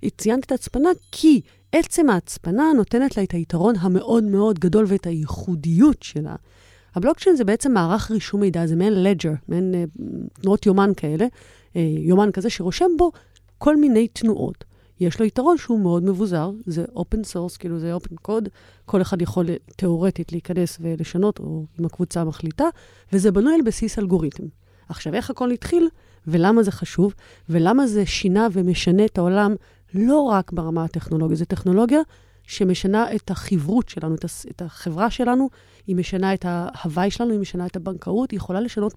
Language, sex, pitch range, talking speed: Hebrew, female, 170-220 Hz, 155 wpm